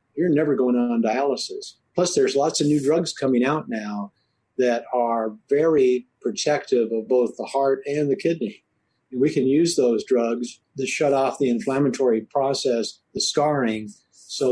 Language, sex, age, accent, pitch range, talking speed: English, male, 50-69, American, 120-150 Hz, 165 wpm